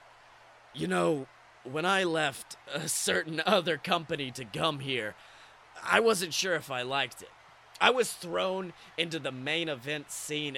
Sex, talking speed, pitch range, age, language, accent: male, 155 wpm, 150-215 Hz, 30-49, English, American